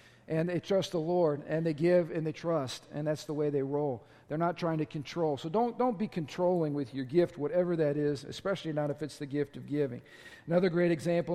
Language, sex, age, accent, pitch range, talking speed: English, male, 50-69, American, 155-195 Hz, 235 wpm